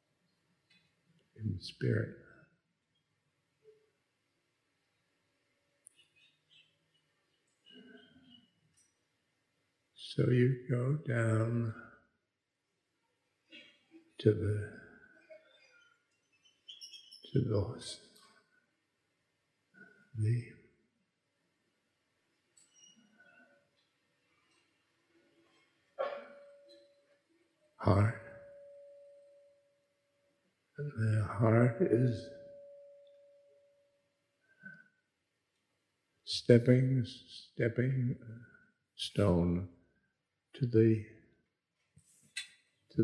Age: 60-79